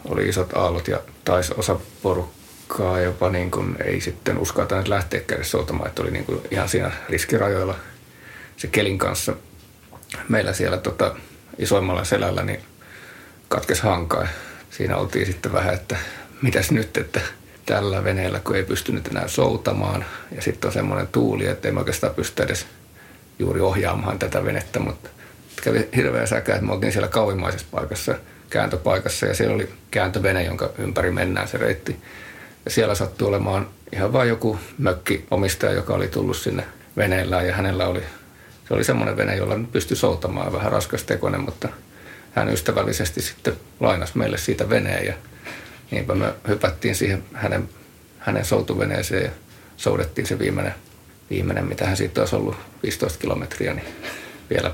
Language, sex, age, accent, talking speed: Finnish, male, 30-49, native, 150 wpm